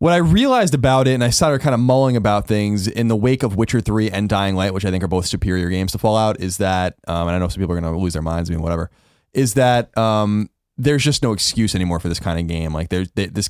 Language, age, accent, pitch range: English, 20-39, American, 90-130 Hz